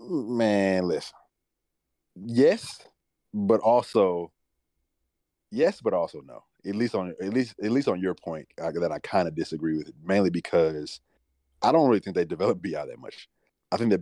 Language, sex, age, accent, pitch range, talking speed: English, male, 30-49, American, 75-90 Hz, 170 wpm